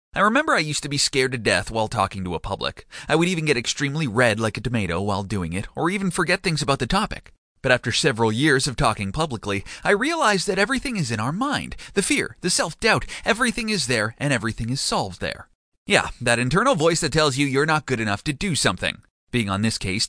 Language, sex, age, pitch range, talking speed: English, male, 30-49, 115-165 Hz, 235 wpm